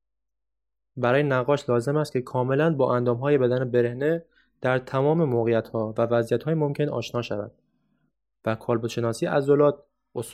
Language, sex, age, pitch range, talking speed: Persian, male, 20-39, 115-155 Hz, 140 wpm